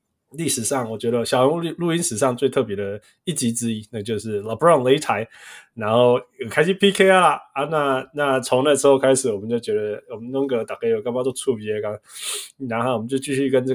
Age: 20-39